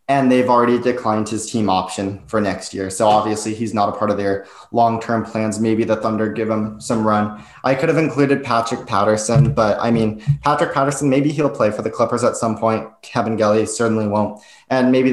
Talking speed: 210 wpm